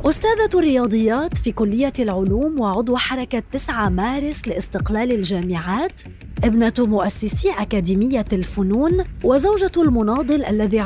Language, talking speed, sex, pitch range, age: Arabic, 100 wpm, female, 195-285 Hz, 20-39